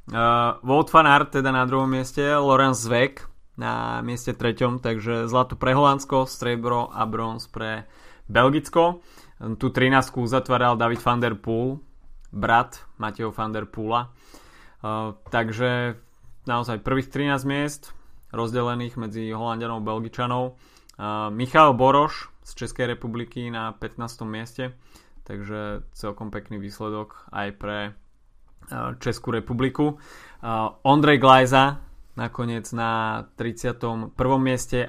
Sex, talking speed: male, 115 wpm